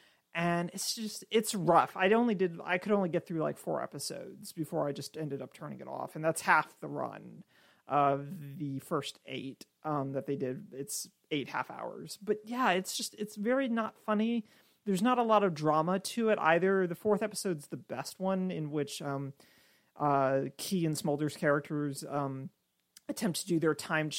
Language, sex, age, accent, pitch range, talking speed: English, male, 30-49, American, 145-195 Hz, 195 wpm